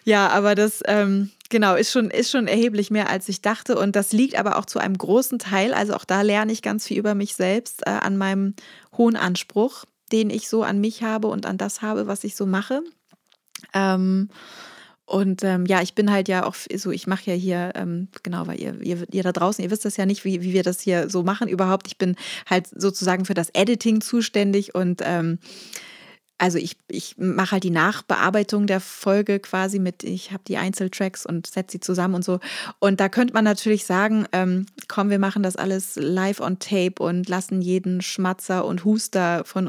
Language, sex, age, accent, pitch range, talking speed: German, female, 20-39, German, 180-210 Hz, 210 wpm